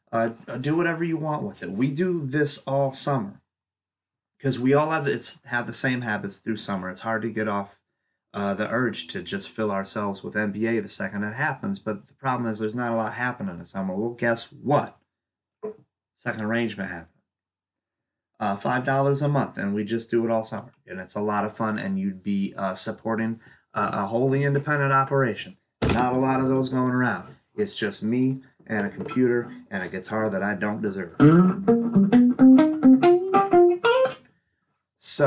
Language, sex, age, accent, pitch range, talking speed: English, male, 30-49, American, 105-140 Hz, 185 wpm